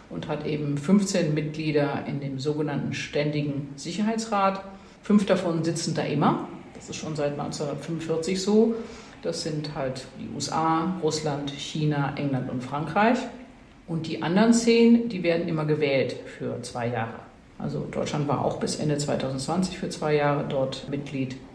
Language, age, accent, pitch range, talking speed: German, 50-69, German, 140-180 Hz, 150 wpm